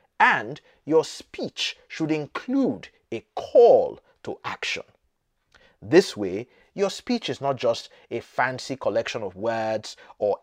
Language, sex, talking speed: English, male, 125 wpm